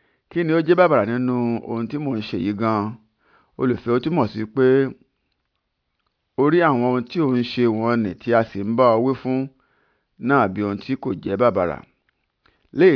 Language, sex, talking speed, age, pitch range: English, male, 170 wpm, 50-69, 115-140 Hz